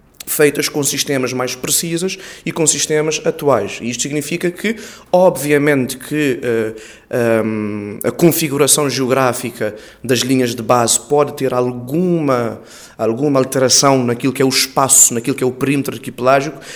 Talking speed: 130 wpm